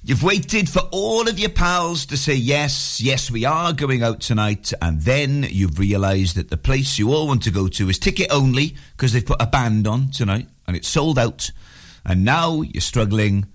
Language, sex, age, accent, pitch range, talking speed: English, male, 40-59, British, 110-180 Hz, 210 wpm